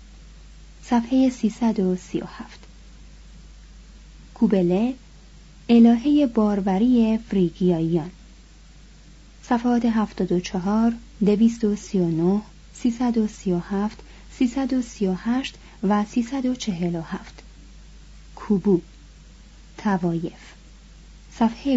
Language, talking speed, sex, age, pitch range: Persian, 45 wpm, female, 30-49, 185-235 Hz